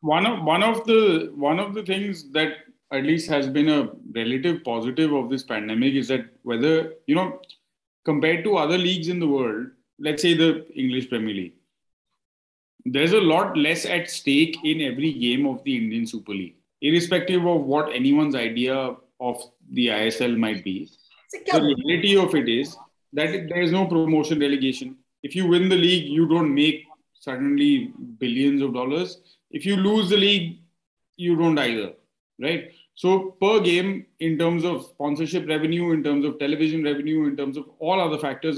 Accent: Indian